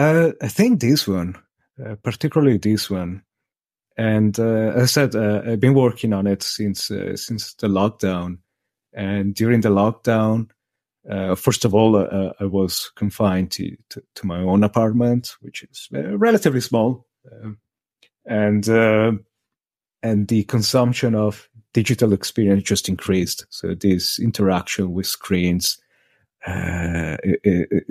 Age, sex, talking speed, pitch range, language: 30-49, male, 140 wpm, 95-115 Hz, English